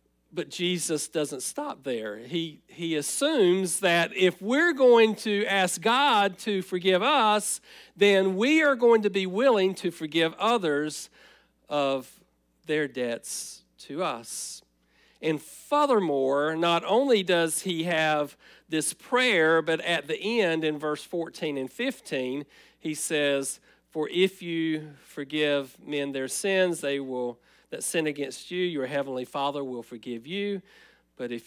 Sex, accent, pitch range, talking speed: male, American, 125-175 Hz, 140 wpm